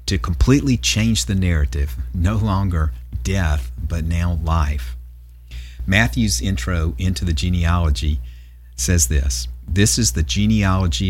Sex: male